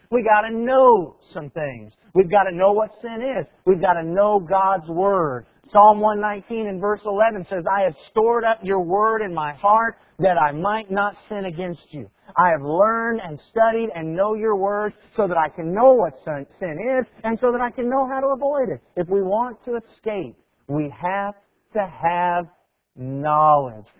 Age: 50-69